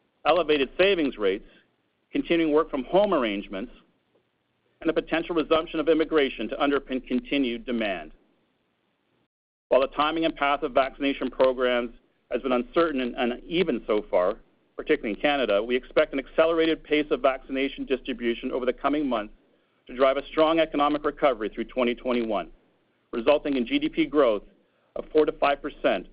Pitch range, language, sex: 125-160 Hz, English, male